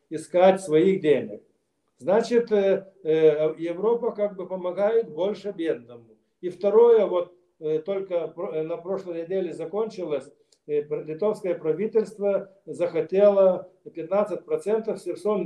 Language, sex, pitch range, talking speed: Russian, male, 160-220 Hz, 90 wpm